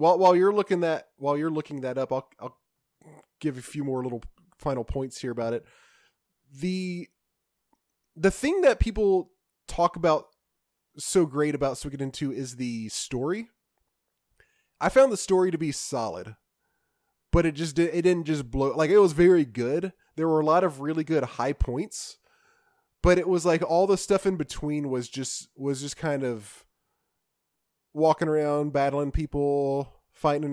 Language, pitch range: English, 135-175 Hz